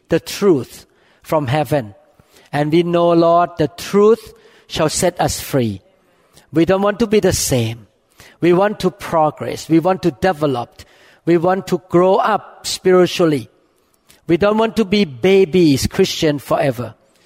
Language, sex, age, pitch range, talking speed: English, male, 50-69, 140-185 Hz, 150 wpm